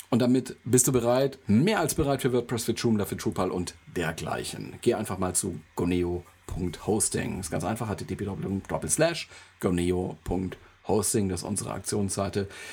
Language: German